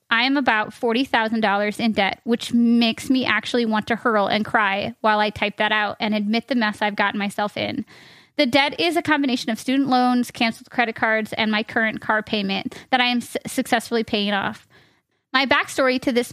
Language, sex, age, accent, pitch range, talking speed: English, female, 20-39, American, 220-260 Hz, 200 wpm